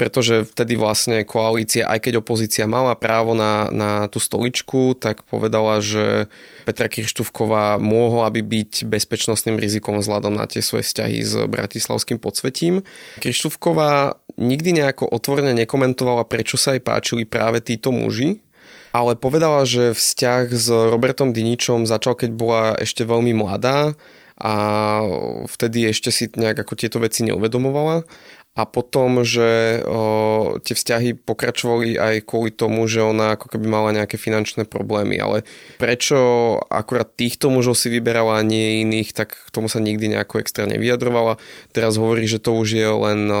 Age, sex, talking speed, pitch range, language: 20-39, male, 150 wpm, 110-120 Hz, Slovak